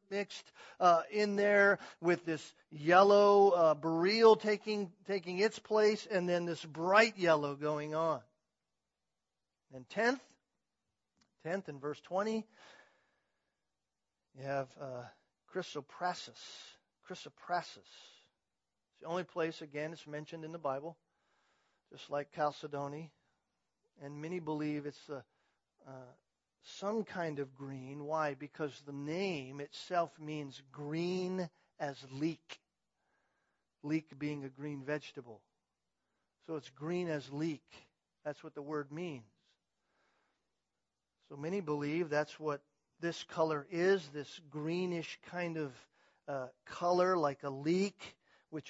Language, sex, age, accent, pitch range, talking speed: English, male, 40-59, American, 145-180 Hz, 120 wpm